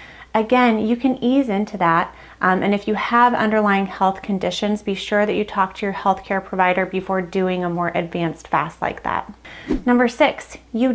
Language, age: English, 30-49